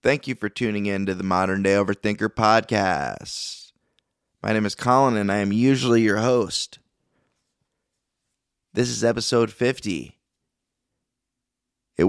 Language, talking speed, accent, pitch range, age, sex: English, 130 wpm, American, 95-115 Hz, 20-39, male